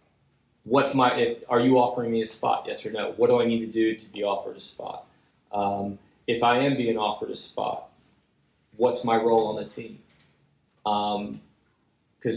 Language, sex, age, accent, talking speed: English, male, 20-39, American, 185 wpm